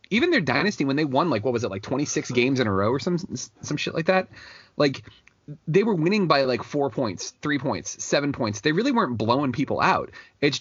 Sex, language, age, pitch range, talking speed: male, English, 30-49, 115-145 Hz, 230 wpm